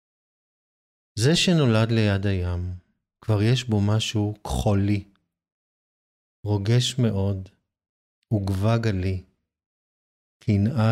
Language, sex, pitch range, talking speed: Hebrew, male, 95-115 Hz, 75 wpm